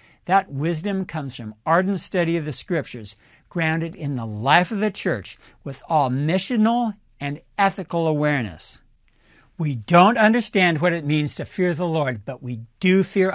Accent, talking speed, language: American, 160 wpm, English